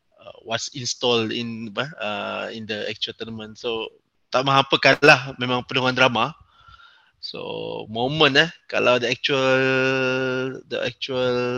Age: 20-39